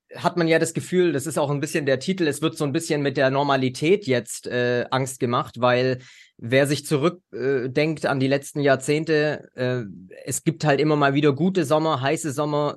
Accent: German